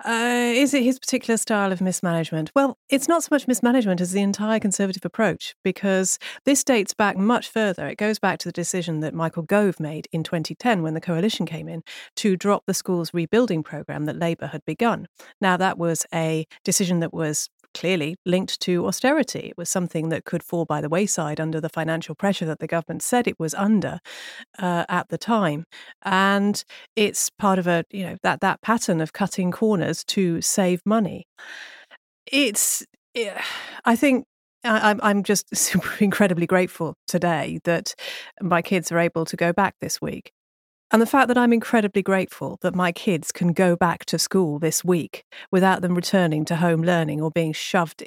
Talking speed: 185 wpm